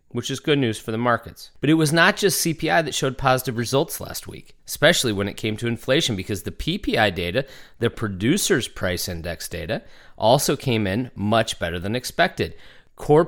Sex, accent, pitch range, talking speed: male, American, 110-170 Hz, 190 wpm